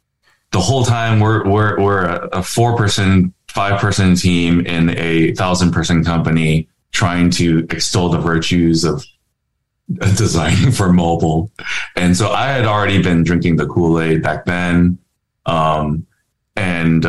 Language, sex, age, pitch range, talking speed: English, male, 20-39, 85-100 Hz, 135 wpm